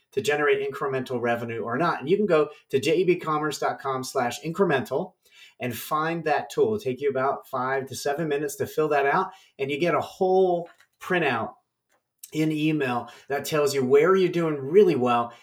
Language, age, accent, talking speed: English, 30-49, American, 175 wpm